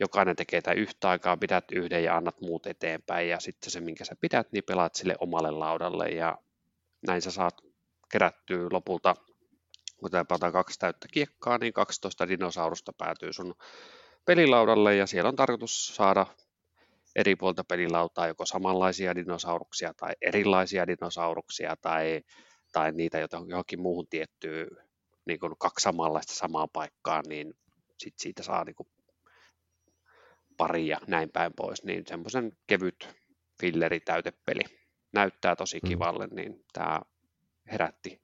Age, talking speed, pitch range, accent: 30-49, 135 wpm, 85-115 Hz, native